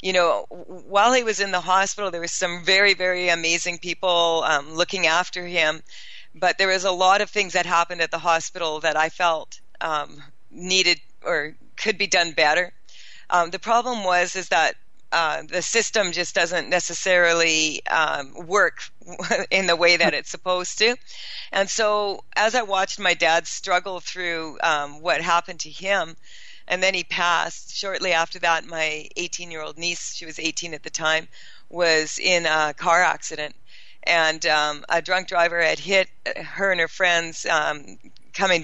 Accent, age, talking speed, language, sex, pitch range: American, 40-59, 170 wpm, English, female, 160-185 Hz